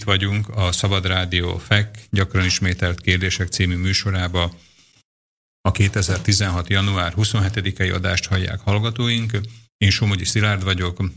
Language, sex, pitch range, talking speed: Slovak, male, 90-100 Hz, 120 wpm